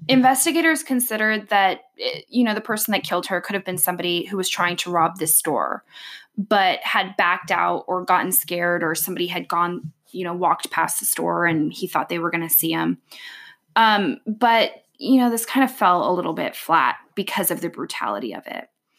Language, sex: English, female